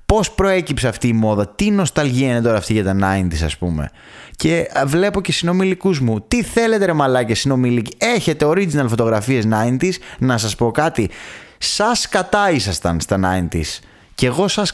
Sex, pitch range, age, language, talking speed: male, 100-150 Hz, 20-39, Greek, 170 wpm